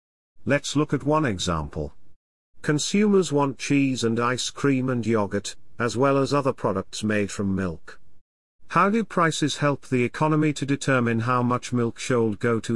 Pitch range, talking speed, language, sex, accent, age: 105-145 Hz, 165 wpm, English, male, British, 50-69